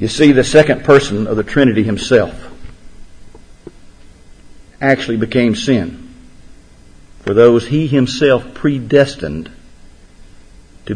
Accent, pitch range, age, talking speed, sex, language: American, 95-140 Hz, 50-69, 100 wpm, male, English